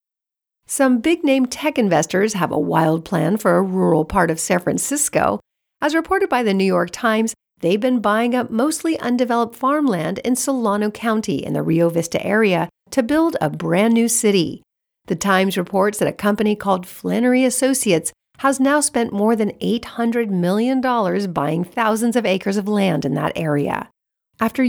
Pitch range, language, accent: 180-250 Hz, English, American